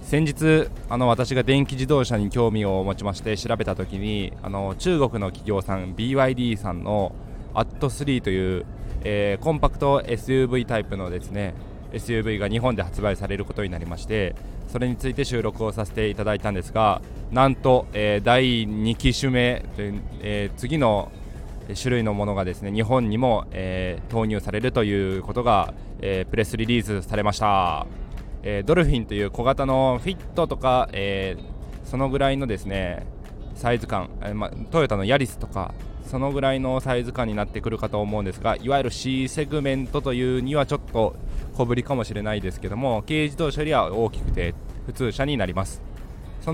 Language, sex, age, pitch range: Japanese, male, 20-39, 100-130 Hz